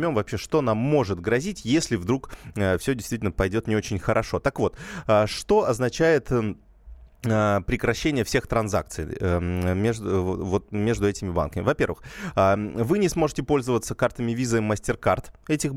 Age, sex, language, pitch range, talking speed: 20-39, male, Russian, 95-130 Hz, 145 wpm